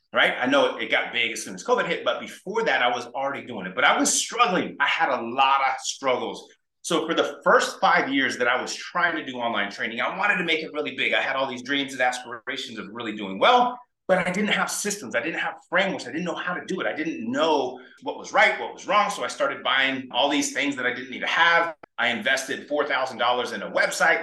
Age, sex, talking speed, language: 30-49, male, 260 wpm, English